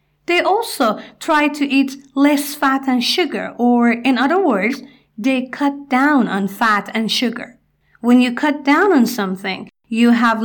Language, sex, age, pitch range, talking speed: Persian, female, 40-59, 240-290 Hz, 160 wpm